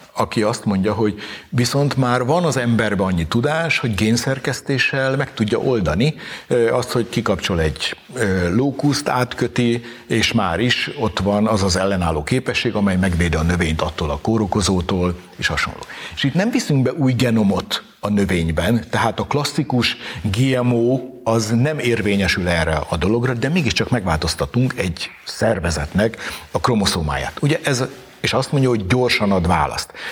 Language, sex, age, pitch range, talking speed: Hungarian, male, 60-79, 95-125 Hz, 150 wpm